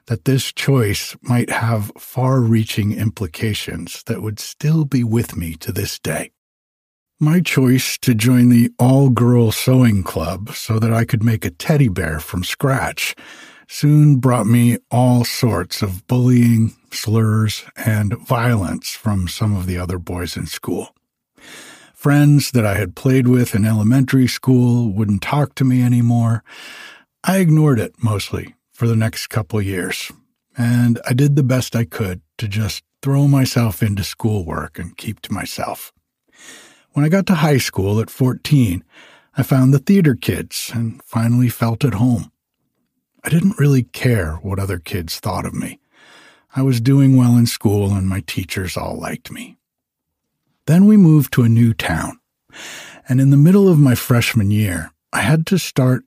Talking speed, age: 165 wpm, 60-79